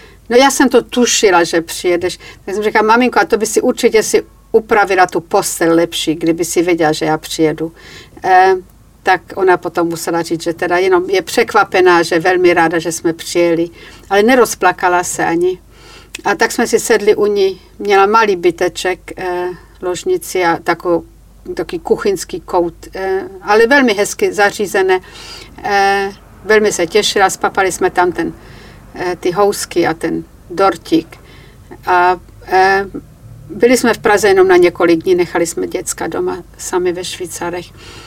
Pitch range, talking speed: 175-225 Hz, 160 wpm